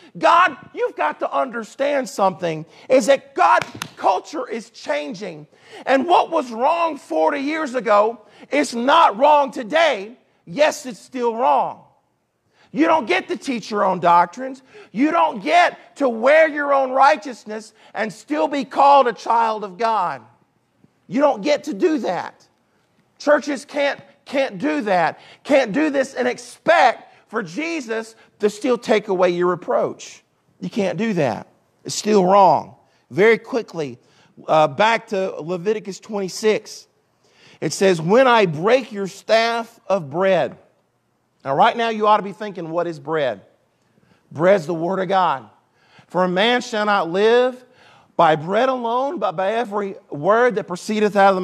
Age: 40-59